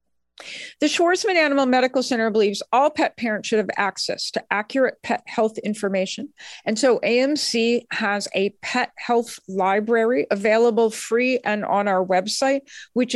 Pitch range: 205-255 Hz